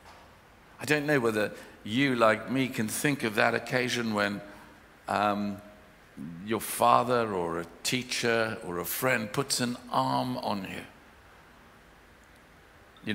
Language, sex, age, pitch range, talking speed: English, male, 60-79, 110-155 Hz, 125 wpm